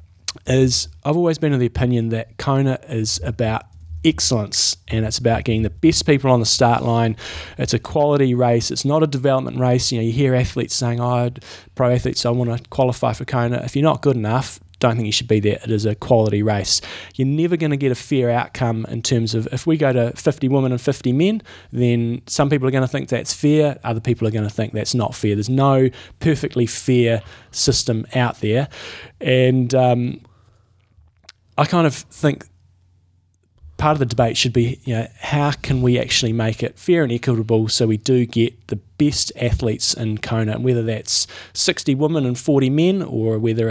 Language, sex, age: English, male, 20-39